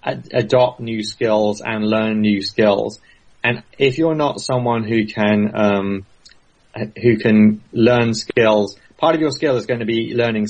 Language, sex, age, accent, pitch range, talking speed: English, male, 30-49, British, 105-130 Hz, 165 wpm